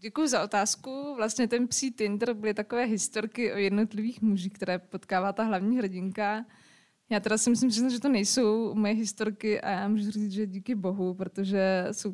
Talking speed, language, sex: 180 wpm, Czech, female